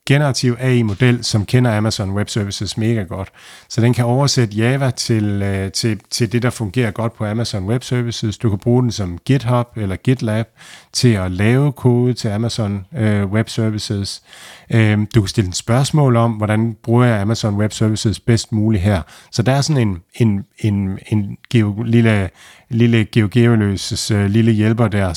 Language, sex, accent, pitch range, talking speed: Danish, male, native, 105-120 Hz, 160 wpm